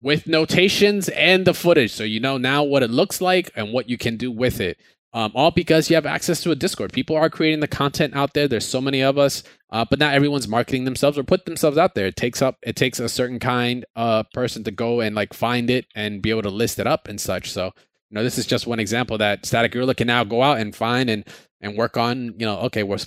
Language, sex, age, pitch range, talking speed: English, male, 20-39, 110-145 Hz, 265 wpm